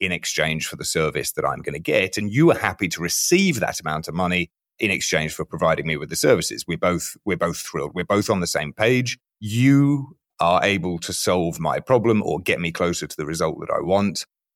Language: English